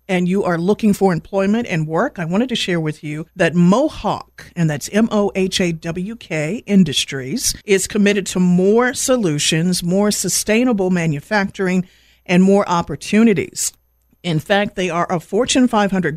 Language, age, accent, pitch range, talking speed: English, 50-69, American, 165-210 Hz, 140 wpm